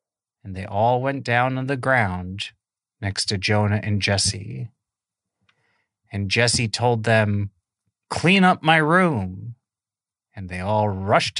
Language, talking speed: English, 130 wpm